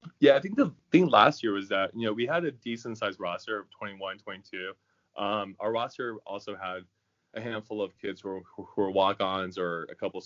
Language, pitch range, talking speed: English, 90-105 Hz, 210 wpm